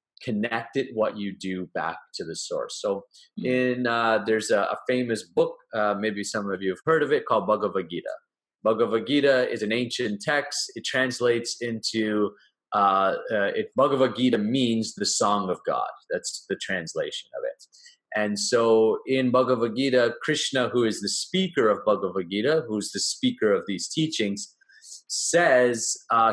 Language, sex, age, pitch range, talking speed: English, male, 30-49, 115-190 Hz, 155 wpm